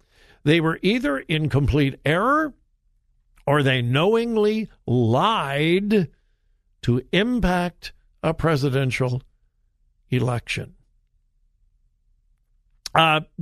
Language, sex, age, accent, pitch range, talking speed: English, male, 60-79, American, 130-185 Hz, 70 wpm